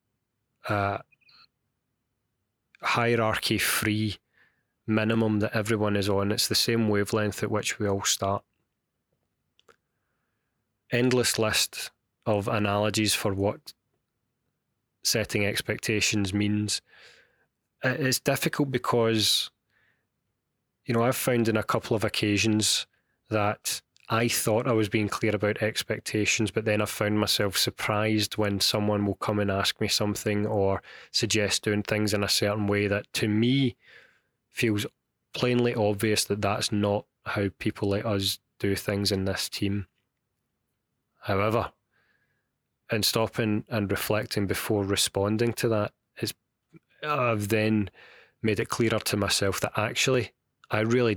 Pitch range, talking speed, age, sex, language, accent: 105-115 Hz, 125 wpm, 20-39, male, English, British